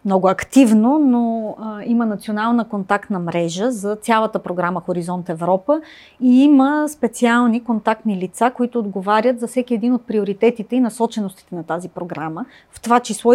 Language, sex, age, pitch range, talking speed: Bulgarian, female, 30-49, 195-245 Hz, 150 wpm